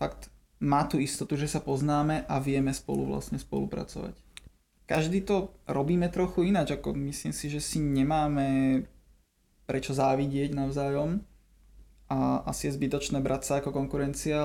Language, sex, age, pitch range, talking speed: Slovak, male, 20-39, 135-150 Hz, 140 wpm